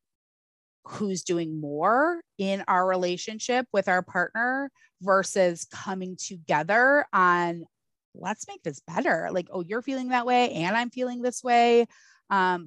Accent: American